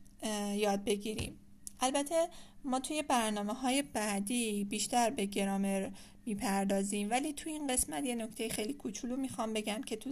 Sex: female